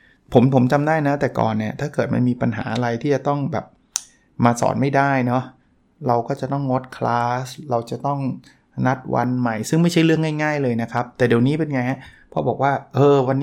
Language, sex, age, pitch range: Thai, male, 20-39, 115-135 Hz